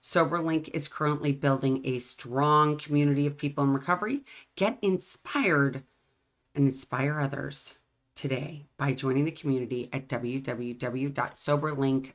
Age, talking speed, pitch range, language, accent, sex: 40-59, 115 wpm, 130-160 Hz, English, American, female